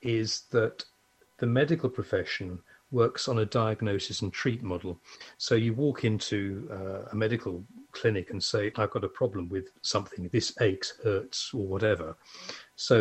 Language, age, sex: English, 40-59, male